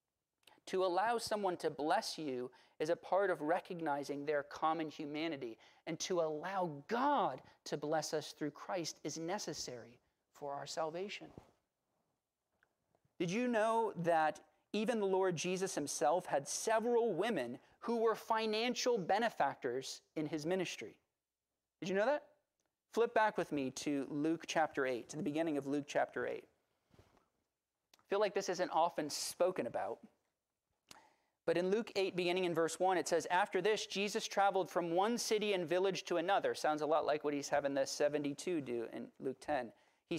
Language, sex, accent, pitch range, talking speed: English, male, American, 150-200 Hz, 165 wpm